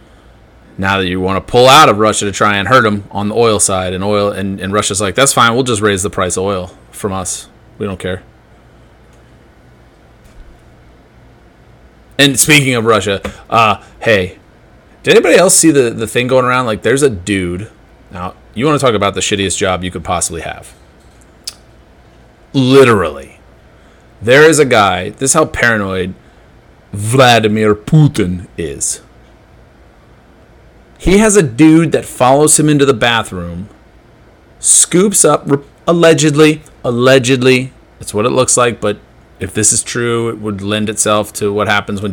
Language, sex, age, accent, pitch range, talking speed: English, male, 30-49, American, 95-130 Hz, 160 wpm